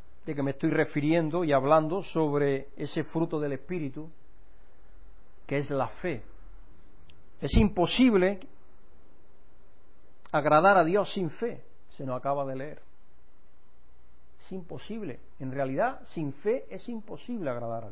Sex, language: male, Spanish